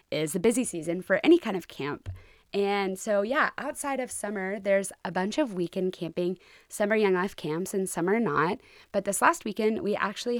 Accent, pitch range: American, 175-220 Hz